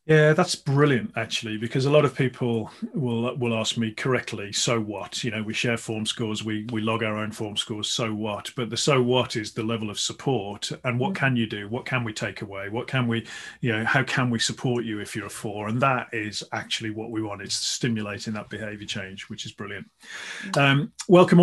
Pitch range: 115-155 Hz